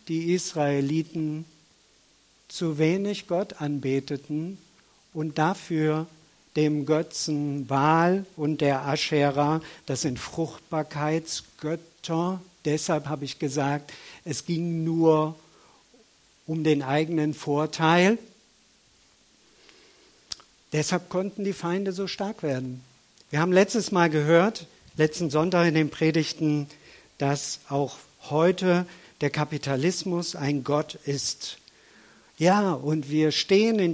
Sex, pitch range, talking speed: male, 140-175 Hz, 105 wpm